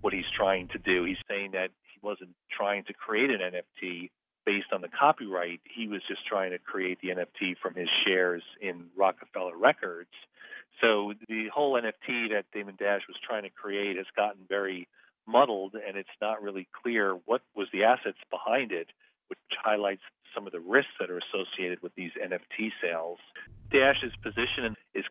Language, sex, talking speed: English, male, 180 wpm